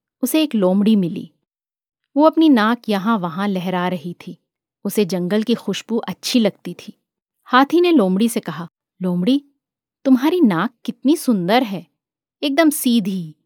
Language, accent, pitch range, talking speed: Hindi, native, 185-255 Hz, 145 wpm